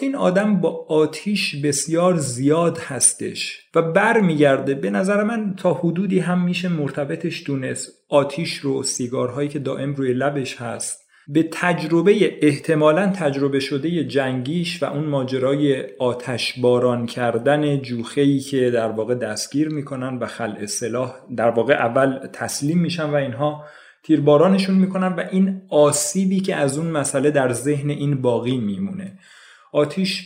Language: Persian